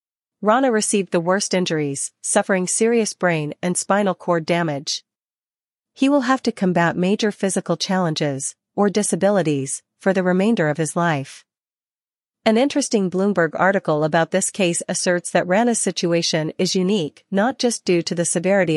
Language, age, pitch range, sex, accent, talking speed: English, 40-59, 165-200 Hz, female, American, 150 wpm